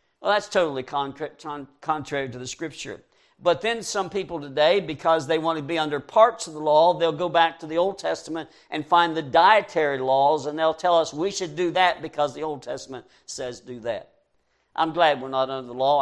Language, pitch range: English, 135-165 Hz